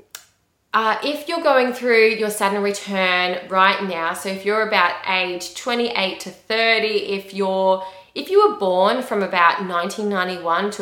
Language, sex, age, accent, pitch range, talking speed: English, female, 20-39, Australian, 175-210 Hz, 155 wpm